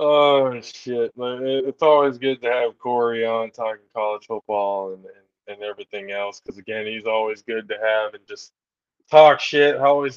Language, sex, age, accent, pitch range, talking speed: English, male, 20-39, American, 110-135 Hz, 170 wpm